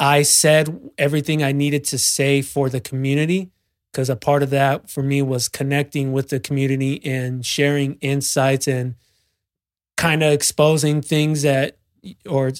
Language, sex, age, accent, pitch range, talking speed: English, male, 20-39, American, 130-145 Hz, 150 wpm